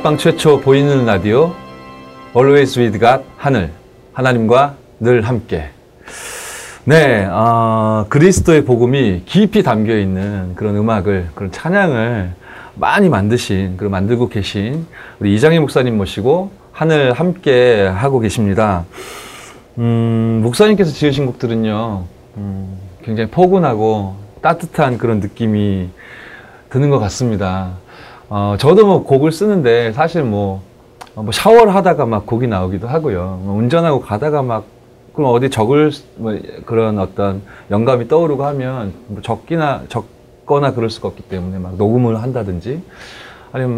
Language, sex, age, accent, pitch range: Korean, male, 30-49, native, 105-140 Hz